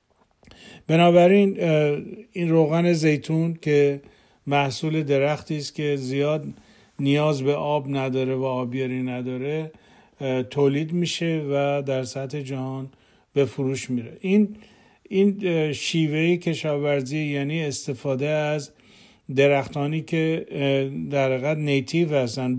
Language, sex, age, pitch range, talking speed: Persian, male, 50-69, 135-155 Hz, 100 wpm